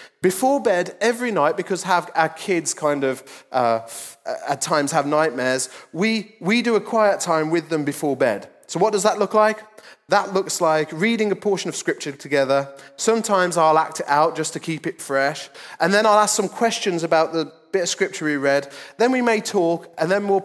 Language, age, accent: English, 30-49, British